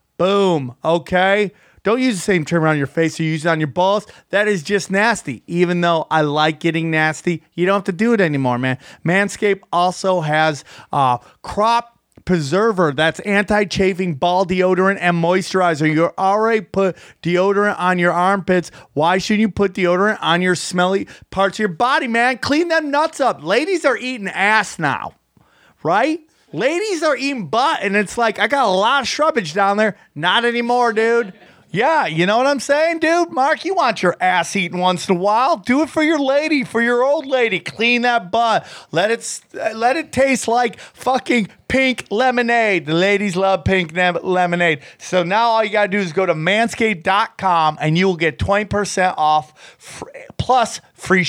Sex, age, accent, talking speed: male, 30-49, American, 185 wpm